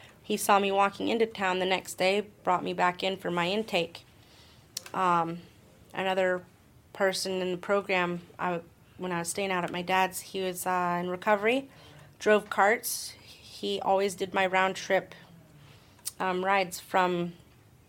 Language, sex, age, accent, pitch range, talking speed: English, female, 30-49, American, 160-190 Hz, 150 wpm